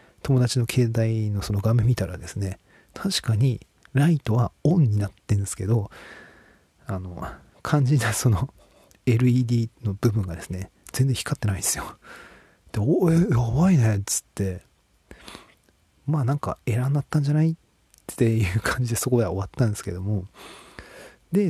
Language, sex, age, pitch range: Japanese, male, 40-59, 100-135 Hz